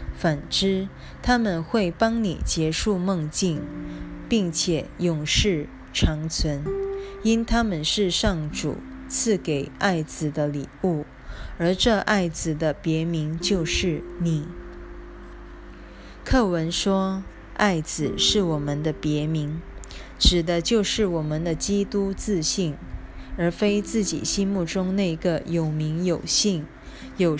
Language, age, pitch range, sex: Chinese, 20-39, 155-200 Hz, female